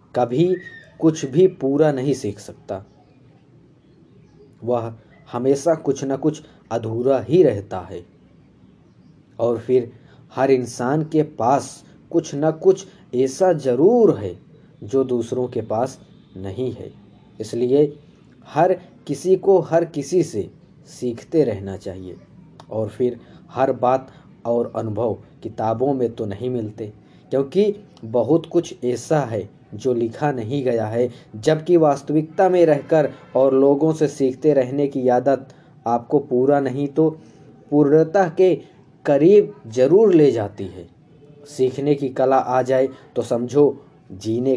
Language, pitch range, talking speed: Hindi, 120-150 Hz, 130 wpm